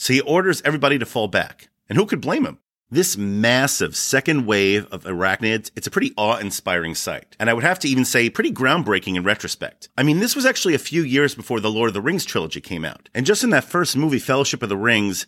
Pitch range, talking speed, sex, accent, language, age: 105-145 Hz, 240 wpm, male, American, English, 40-59